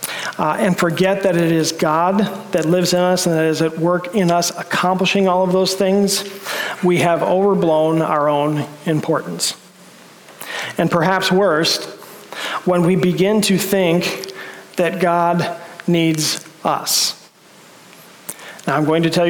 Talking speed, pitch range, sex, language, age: 145 wpm, 155-185 Hz, male, English, 40-59